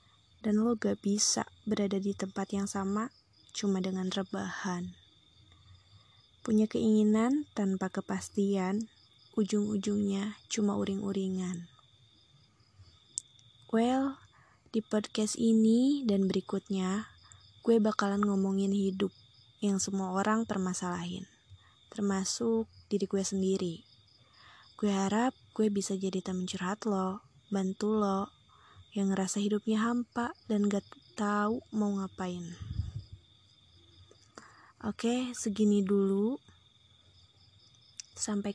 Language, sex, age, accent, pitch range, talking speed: Indonesian, female, 20-39, native, 180-210 Hz, 95 wpm